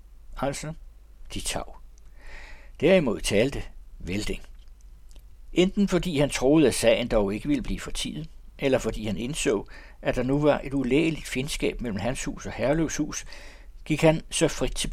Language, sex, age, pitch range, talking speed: Danish, male, 60-79, 100-145 Hz, 155 wpm